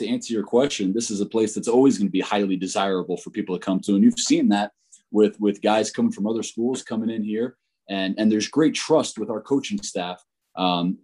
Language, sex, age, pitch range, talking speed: English, male, 20-39, 95-115 Hz, 240 wpm